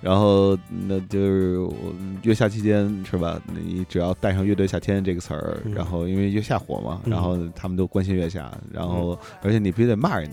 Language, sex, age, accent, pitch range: Chinese, male, 20-39, native, 95-125 Hz